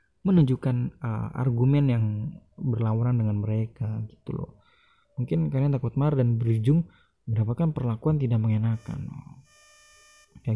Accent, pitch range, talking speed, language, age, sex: native, 115-150 Hz, 115 wpm, Indonesian, 20-39, male